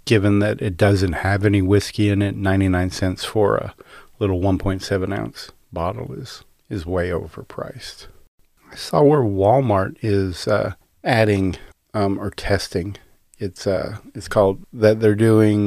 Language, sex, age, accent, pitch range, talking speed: English, male, 40-59, American, 90-105 Hz, 145 wpm